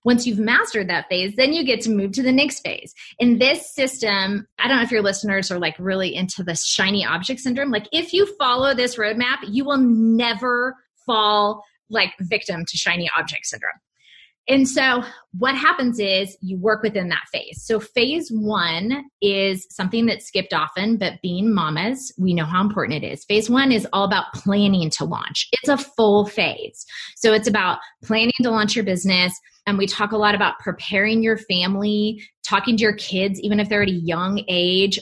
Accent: American